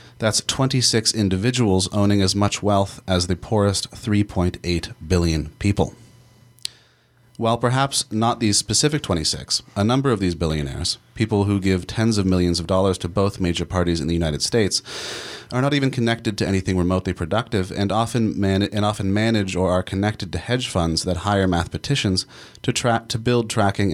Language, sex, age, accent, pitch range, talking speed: English, male, 30-49, American, 90-115 Hz, 175 wpm